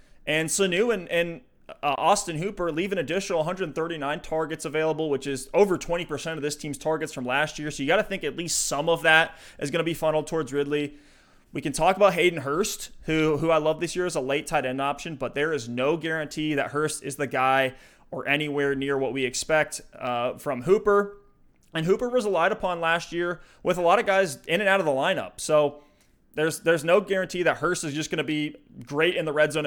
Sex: male